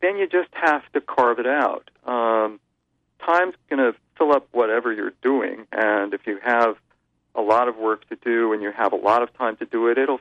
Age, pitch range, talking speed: 40-59, 110-150 Hz, 225 wpm